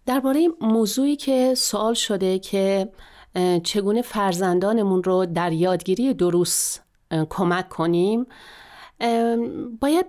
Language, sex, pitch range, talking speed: Persian, female, 190-245 Hz, 90 wpm